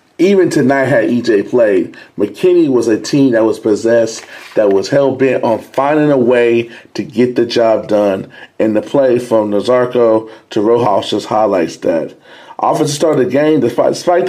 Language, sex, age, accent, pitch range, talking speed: English, male, 30-49, American, 110-135 Hz, 165 wpm